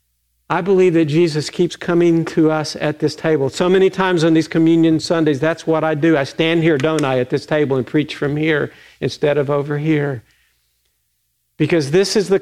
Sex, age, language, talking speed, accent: male, 50-69, English, 205 wpm, American